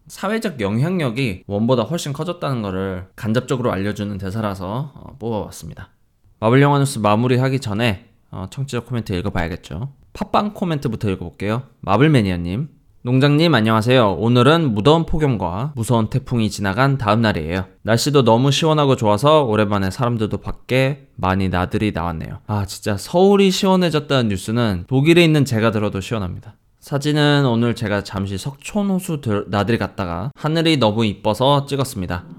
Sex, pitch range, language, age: male, 100-135 Hz, Korean, 20-39